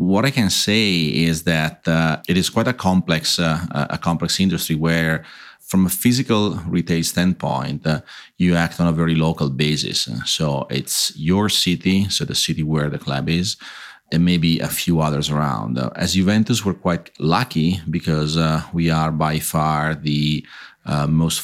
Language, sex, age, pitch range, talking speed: English, male, 40-59, 80-100 Hz, 170 wpm